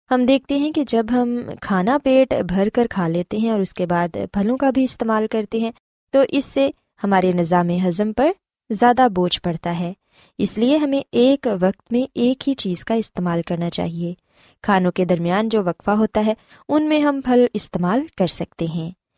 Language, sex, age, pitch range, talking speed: Urdu, female, 20-39, 180-255 Hz, 195 wpm